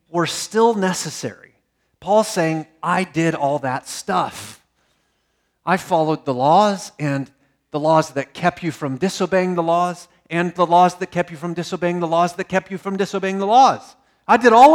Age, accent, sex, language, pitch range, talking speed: 40-59, American, male, English, 125-180 Hz, 180 wpm